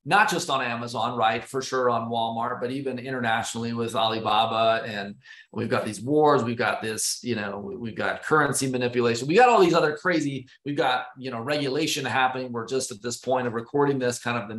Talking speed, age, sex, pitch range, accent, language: 210 wpm, 30-49, male, 120-135 Hz, American, English